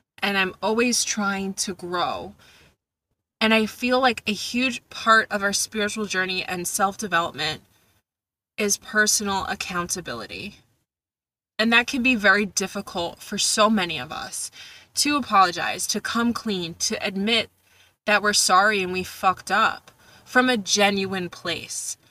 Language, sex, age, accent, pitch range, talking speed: English, female, 20-39, American, 185-225 Hz, 140 wpm